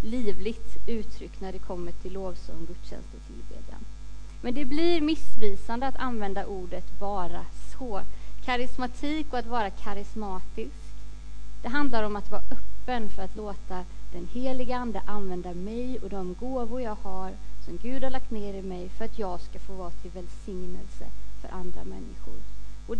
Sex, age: female, 30-49